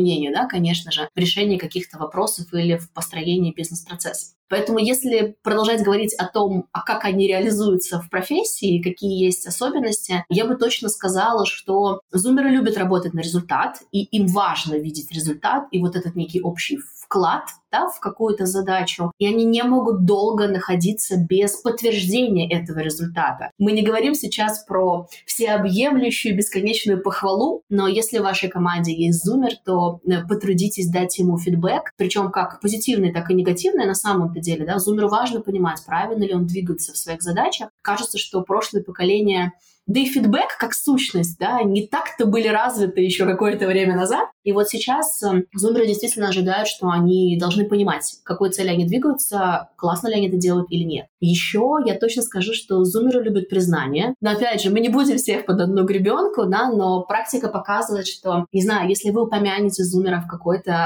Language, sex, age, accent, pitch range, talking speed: Russian, female, 20-39, native, 180-215 Hz, 170 wpm